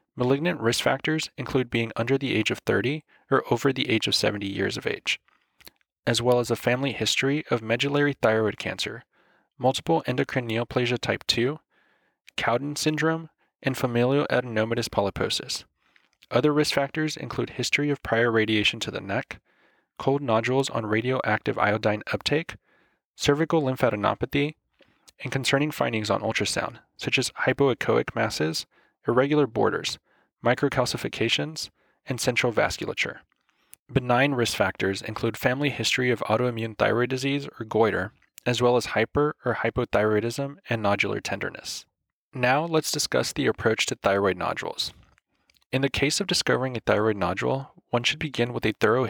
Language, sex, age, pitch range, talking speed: English, male, 20-39, 110-140 Hz, 145 wpm